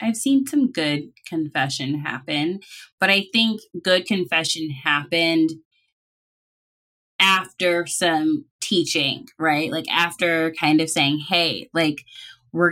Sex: female